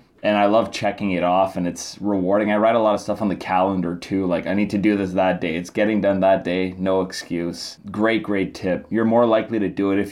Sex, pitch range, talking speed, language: male, 95-110 Hz, 260 wpm, English